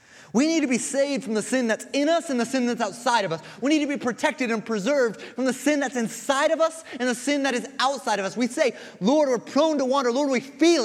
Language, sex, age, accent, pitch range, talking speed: English, male, 30-49, American, 215-285 Hz, 275 wpm